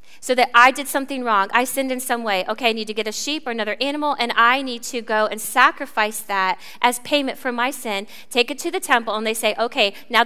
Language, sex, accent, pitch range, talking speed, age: English, female, American, 215-260 Hz, 255 wpm, 30-49